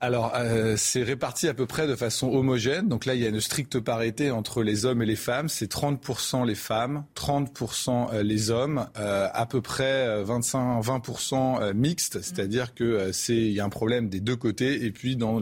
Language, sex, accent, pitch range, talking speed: French, male, French, 110-140 Hz, 200 wpm